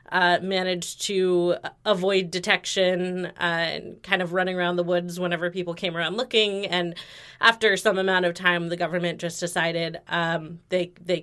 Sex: female